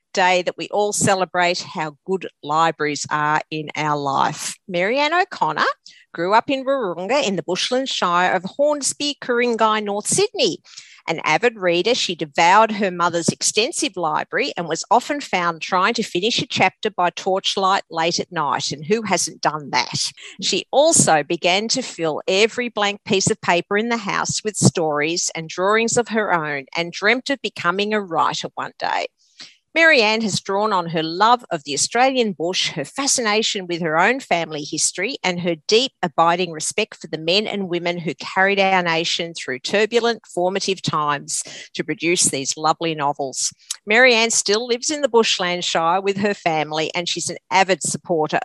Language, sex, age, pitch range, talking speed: English, female, 50-69, 165-225 Hz, 170 wpm